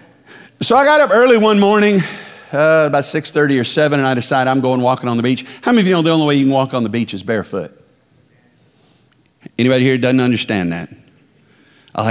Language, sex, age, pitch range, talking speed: Italian, male, 50-69, 125-180 Hz, 215 wpm